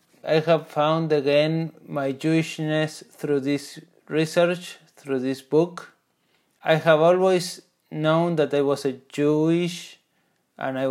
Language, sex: English, male